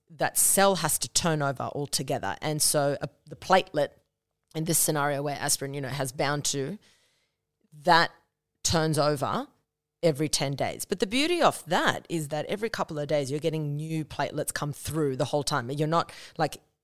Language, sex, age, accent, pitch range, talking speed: English, female, 30-49, Australian, 145-165 Hz, 180 wpm